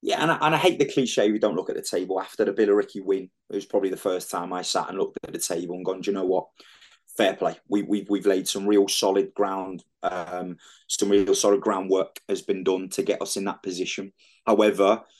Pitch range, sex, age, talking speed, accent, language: 95-105 Hz, male, 20-39, 240 wpm, British, English